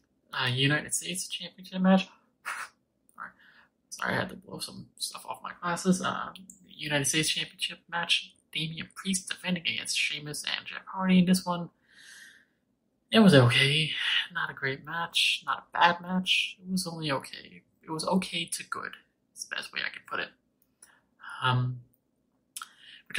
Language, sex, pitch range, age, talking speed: English, male, 135-175 Hz, 20-39, 155 wpm